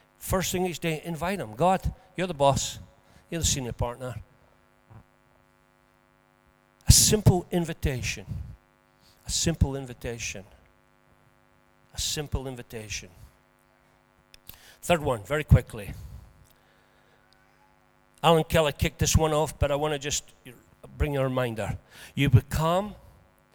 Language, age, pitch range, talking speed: English, 50-69, 110-170 Hz, 110 wpm